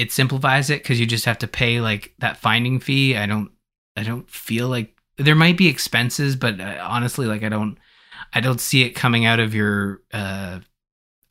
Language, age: English, 20-39